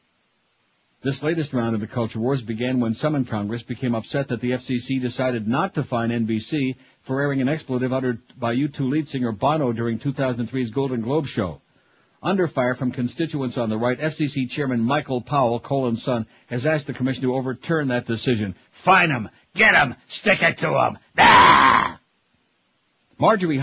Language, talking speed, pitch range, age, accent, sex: English, 175 wpm, 120-145 Hz, 60-79, American, male